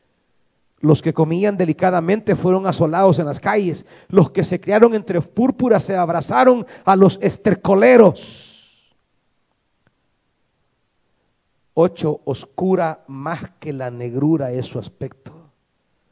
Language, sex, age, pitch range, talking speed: Spanish, male, 50-69, 120-180 Hz, 110 wpm